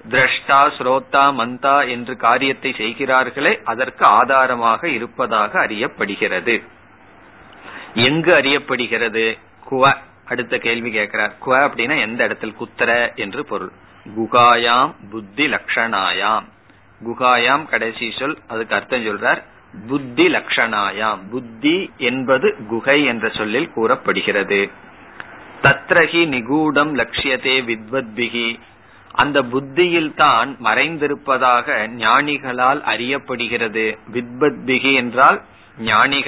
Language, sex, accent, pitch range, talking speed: Tamil, male, native, 115-140 Hz, 80 wpm